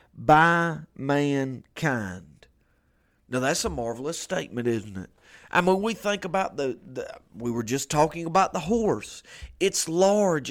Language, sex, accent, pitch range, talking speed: English, male, American, 120-165 Hz, 145 wpm